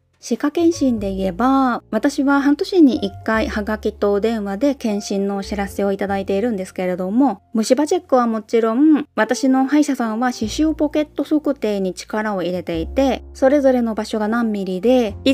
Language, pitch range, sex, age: Japanese, 210-275 Hz, female, 20-39